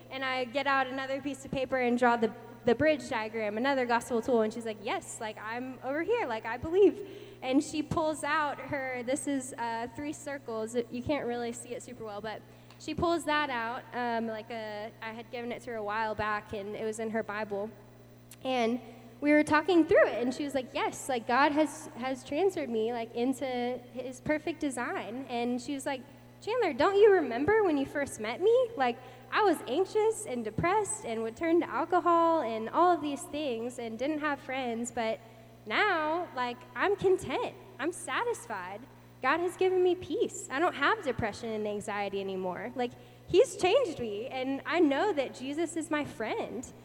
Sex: female